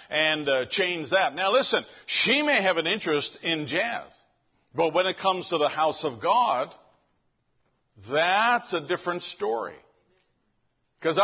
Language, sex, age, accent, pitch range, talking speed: English, male, 60-79, American, 150-215 Hz, 145 wpm